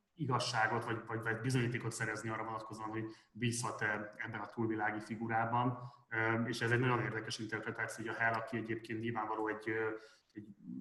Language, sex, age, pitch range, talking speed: Hungarian, male, 20-39, 110-125 Hz, 155 wpm